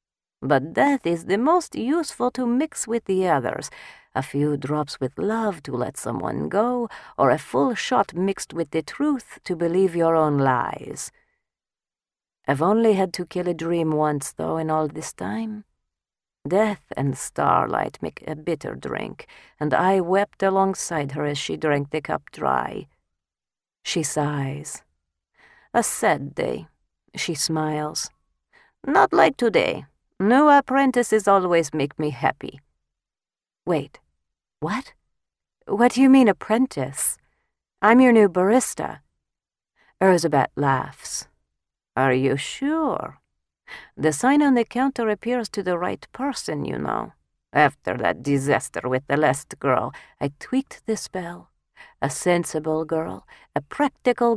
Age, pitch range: 40-59, 140-220 Hz